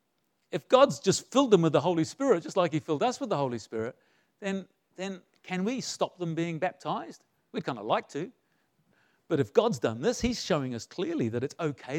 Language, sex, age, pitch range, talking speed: English, male, 50-69, 145-195 Hz, 215 wpm